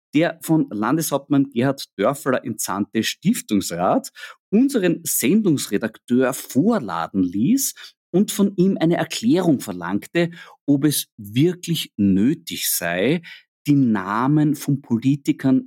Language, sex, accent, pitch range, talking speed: German, male, German, 105-165 Hz, 100 wpm